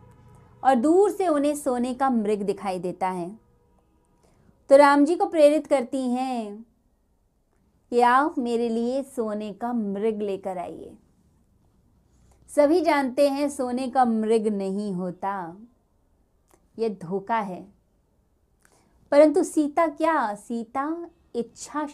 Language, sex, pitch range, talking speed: Hindi, female, 200-290 Hz, 115 wpm